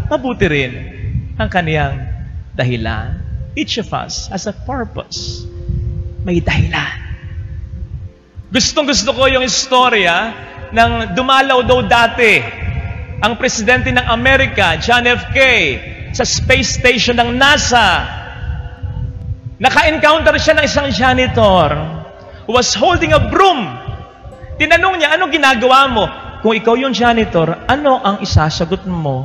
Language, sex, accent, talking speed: Filipino, male, native, 115 wpm